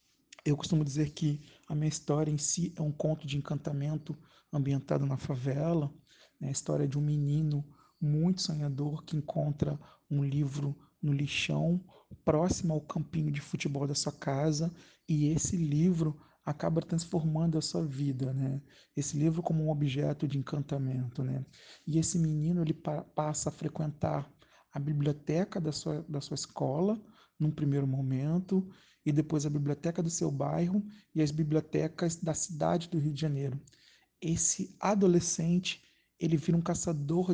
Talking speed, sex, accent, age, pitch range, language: 155 wpm, male, Brazilian, 40-59, 145-165 Hz, Portuguese